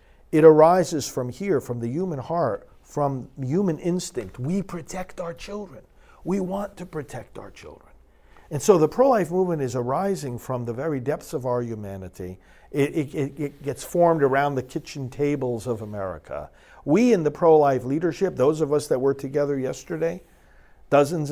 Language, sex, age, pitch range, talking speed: English, male, 50-69, 125-190 Hz, 165 wpm